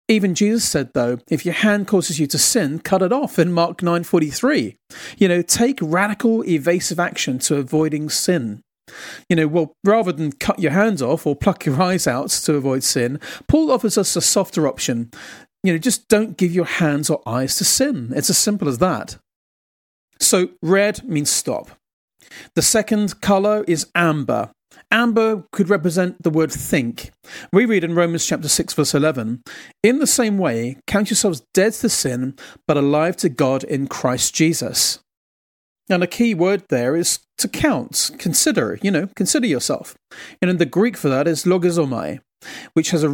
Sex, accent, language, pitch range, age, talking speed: male, British, English, 145-205 Hz, 40-59, 180 wpm